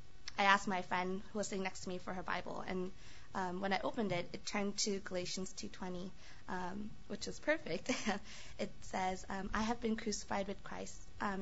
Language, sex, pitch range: English, female, 180-205 Hz